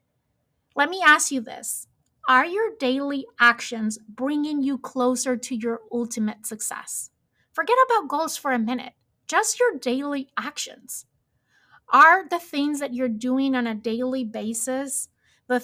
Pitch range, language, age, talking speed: 235-275 Hz, English, 30-49, 140 wpm